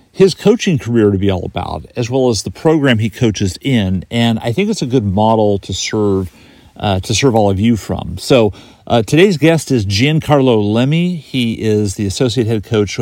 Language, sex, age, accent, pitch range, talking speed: English, male, 40-59, American, 105-135 Hz, 205 wpm